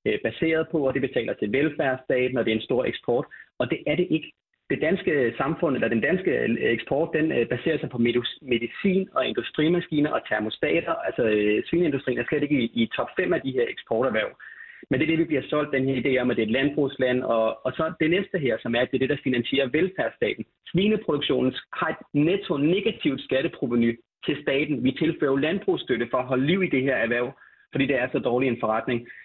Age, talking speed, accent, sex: 30-49, 210 wpm, native, male